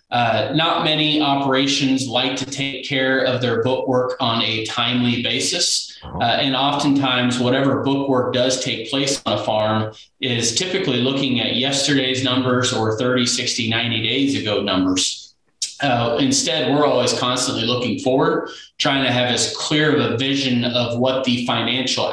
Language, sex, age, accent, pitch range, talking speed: English, male, 30-49, American, 115-135 Hz, 155 wpm